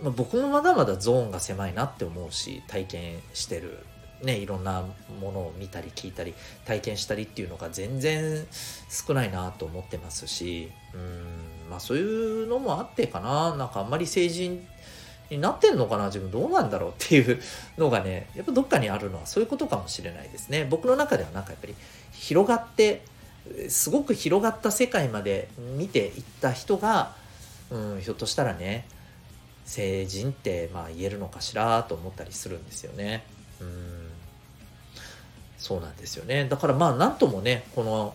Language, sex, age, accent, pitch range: Japanese, male, 40-59, native, 95-150 Hz